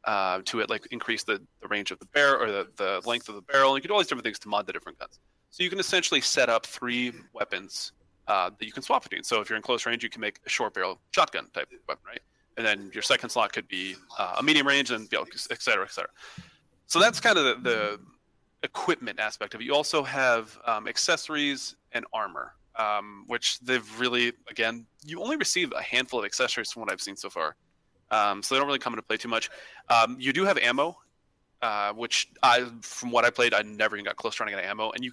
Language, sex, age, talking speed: English, male, 30-49, 250 wpm